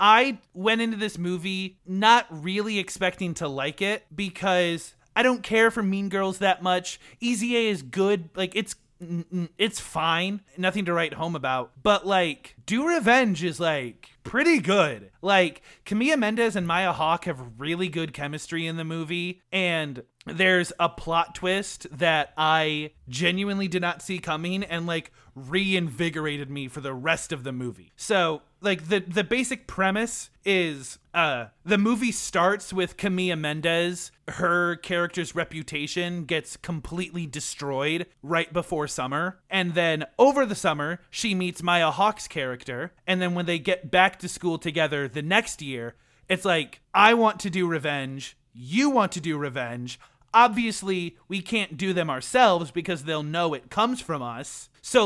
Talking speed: 160 wpm